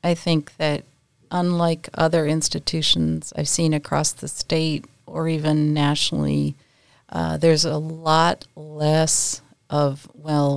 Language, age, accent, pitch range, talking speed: English, 40-59, American, 140-165 Hz, 120 wpm